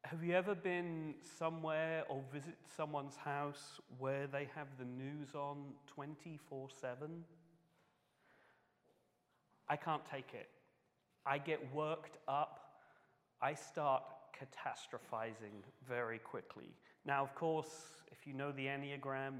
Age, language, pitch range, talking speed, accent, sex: 40-59, English, 125-155 Hz, 120 wpm, British, male